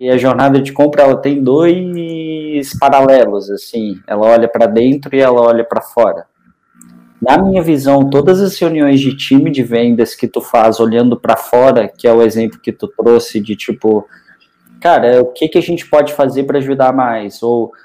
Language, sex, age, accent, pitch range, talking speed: Portuguese, male, 20-39, Brazilian, 130-175 Hz, 190 wpm